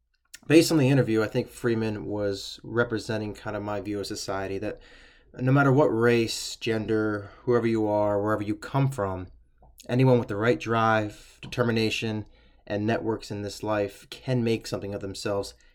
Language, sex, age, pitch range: English, male, 20-39, 100-120 Hz